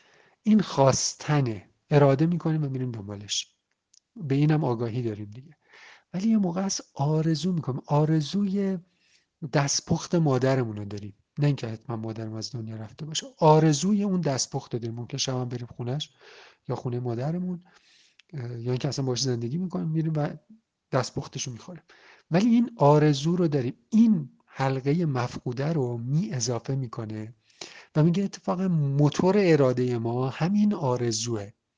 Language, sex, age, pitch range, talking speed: Arabic, male, 50-69, 125-165 Hz, 140 wpm